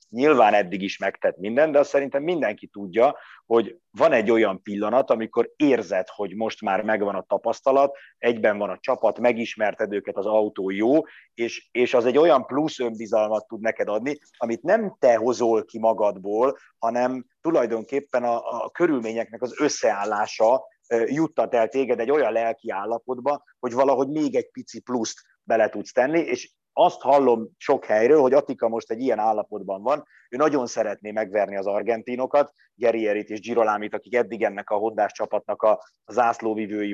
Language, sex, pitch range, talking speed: Hungarian, male, 110-135 Hz, 160 wpm